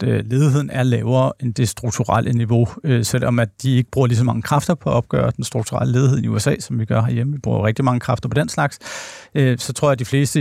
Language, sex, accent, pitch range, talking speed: Danish, male, native, 115-140 Hz, 250 wpm